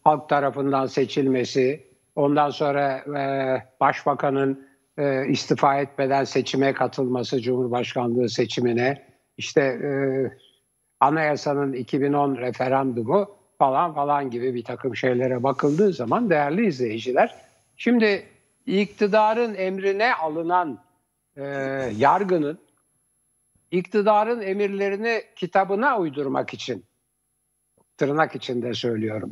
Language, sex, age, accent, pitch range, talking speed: Turkish, male, 60-79, native, 135-195 Hz, 80 wpm